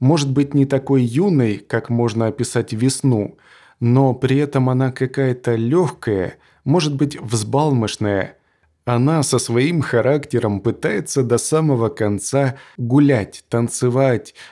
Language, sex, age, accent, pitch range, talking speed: Russian, male, 20-39, native, 115-140 Hz, 115 wpm